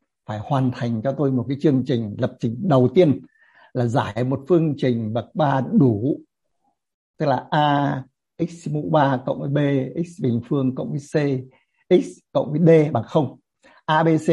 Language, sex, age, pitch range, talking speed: Vietnamese, male, 60-79, 125-155 Hz, 190 wpm